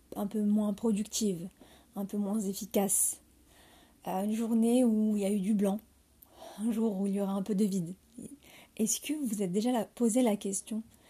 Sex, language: female, French